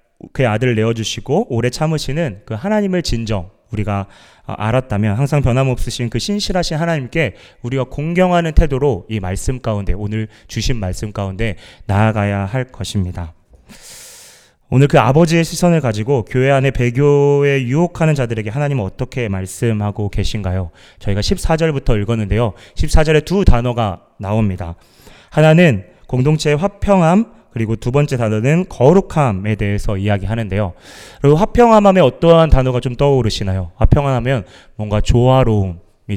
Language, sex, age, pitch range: Korean, male, 30-49, 105-145 Hz